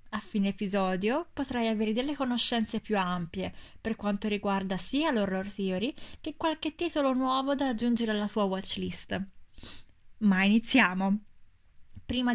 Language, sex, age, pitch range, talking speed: Italian, female, 20-39, 190-240 Hz, 130 wpm